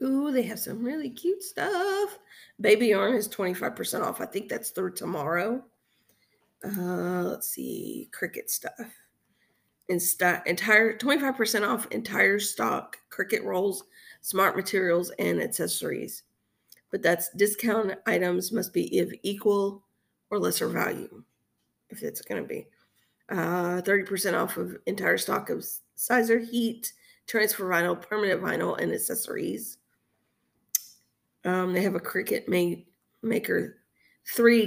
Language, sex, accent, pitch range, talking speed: English, female, American, 185-235 Hz, 130 wpm